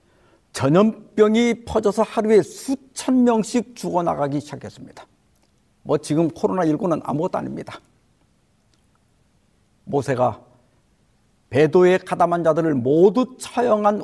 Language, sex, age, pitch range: Korean, male, 50-69, 140-225 Hz